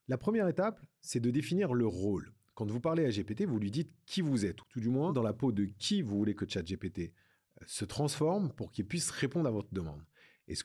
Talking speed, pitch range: 235 wpm, 105-145 Hz